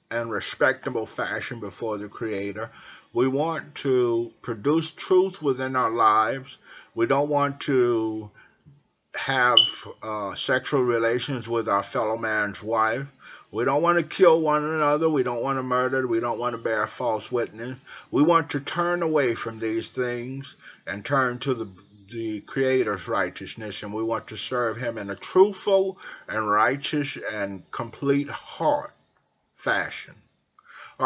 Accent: American